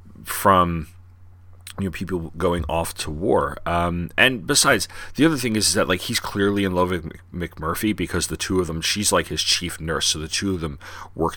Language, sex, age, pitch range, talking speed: English, male, 30-49, 85-95 Hz, 210 wpm